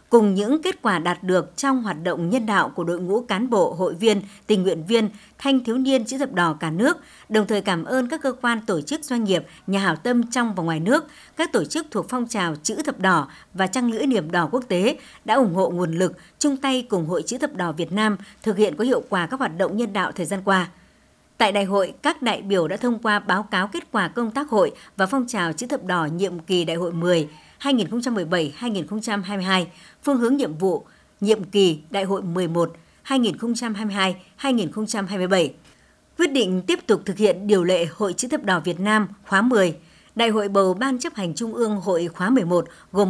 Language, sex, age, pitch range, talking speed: Vietnamese, male, 60-79, 185-245 Hz, 215 wpm